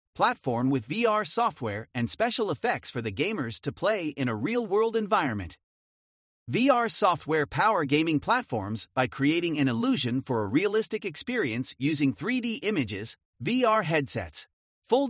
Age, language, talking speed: 40-59, English, 140 wpm